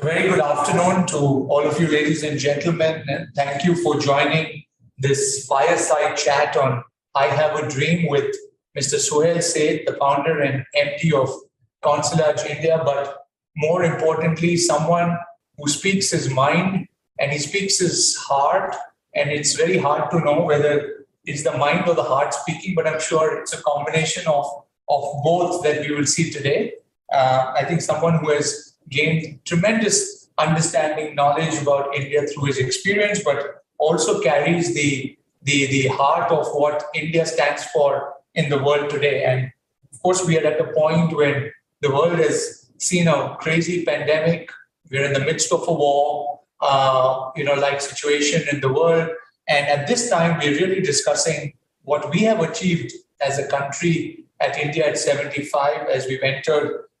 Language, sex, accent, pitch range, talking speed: English, male, Indian, 145-165 Hz, 165 wpm